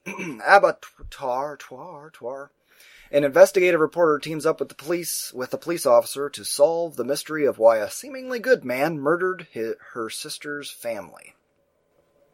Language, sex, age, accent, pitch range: English, male, 20-39, American, 135-175 Hz